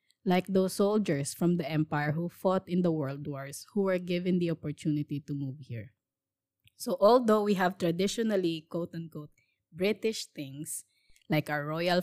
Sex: female